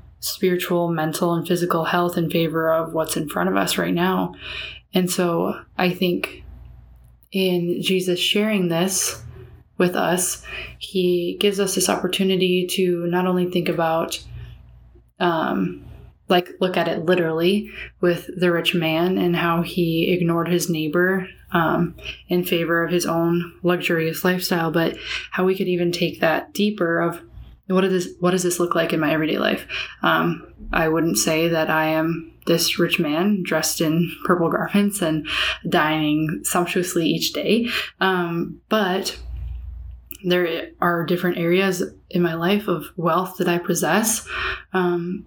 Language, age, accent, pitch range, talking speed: English, 20-39, American, 165-180 Hz, 150 wpm